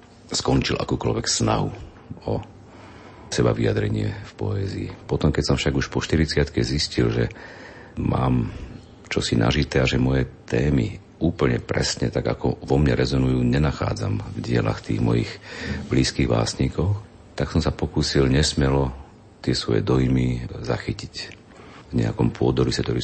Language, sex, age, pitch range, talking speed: Slovak, male, 50-69, 65-105 Hz, 135 wpm